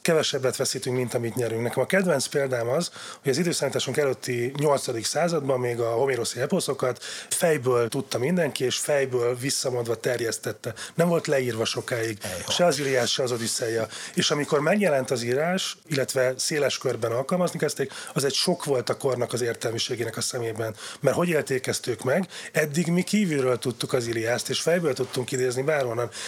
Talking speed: 165 wpm